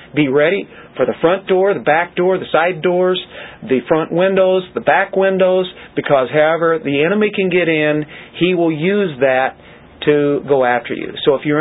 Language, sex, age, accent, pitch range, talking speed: English, male, 40-59, American, 135-175 Hz, 185 wpm